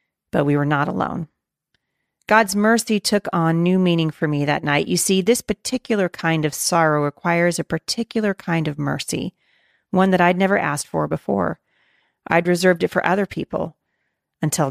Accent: American